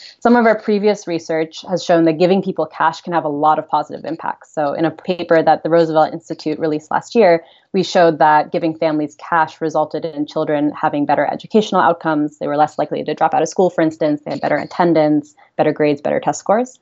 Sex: female